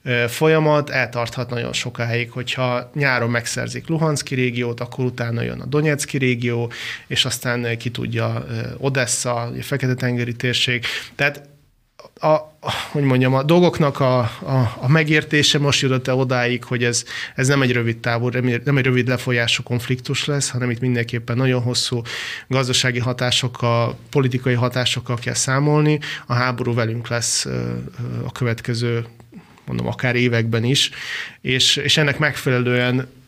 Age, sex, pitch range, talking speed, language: 30-49, male, 120-130 Hz, 130 wpm, Hungarian